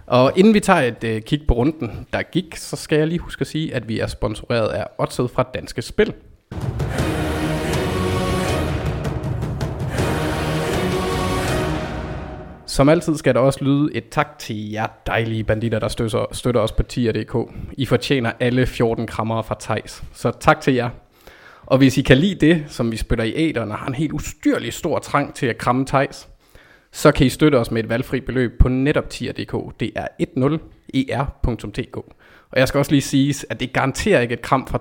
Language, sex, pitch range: Danish, male, 110-140 Hz